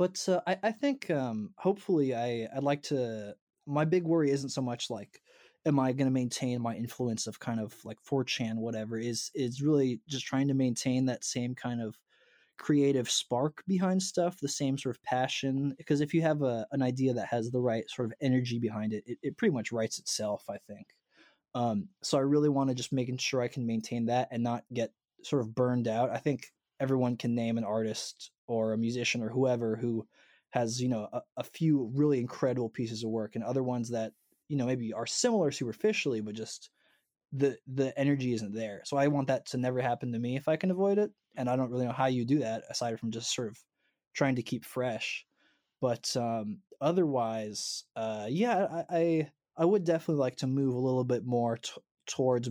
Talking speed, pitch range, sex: 215 wpm, 115-140 Hz, male